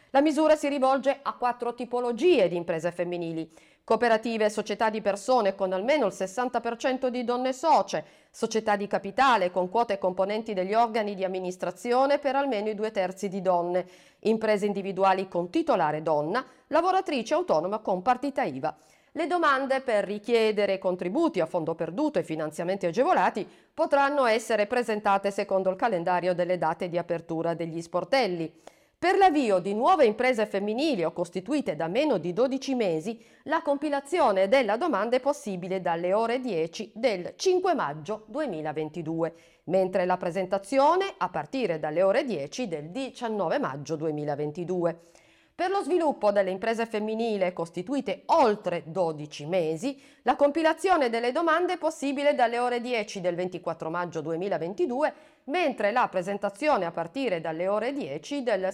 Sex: female